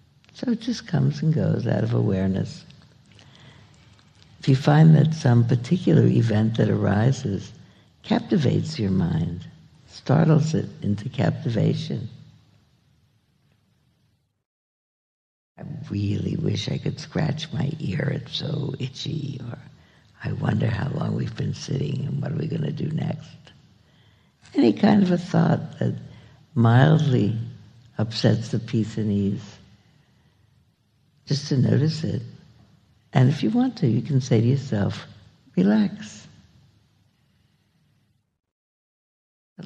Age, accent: 60-79, American